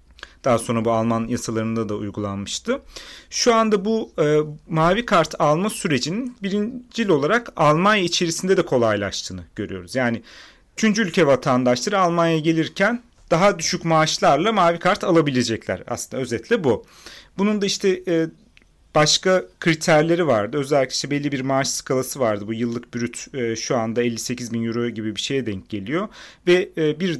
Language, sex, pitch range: Turkish, male, 120-180 Hz